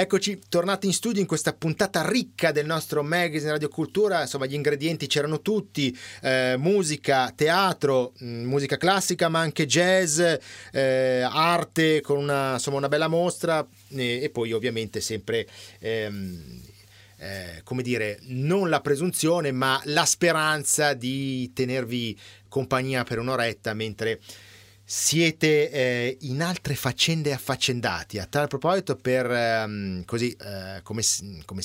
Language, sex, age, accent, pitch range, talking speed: Italian, male, 30-49, native, 115-155 Hz, 125 wpm